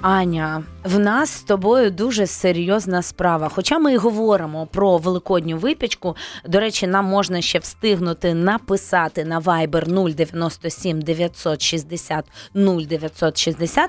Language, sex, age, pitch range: Ukrainian, female, 20-39, 170-215 Hz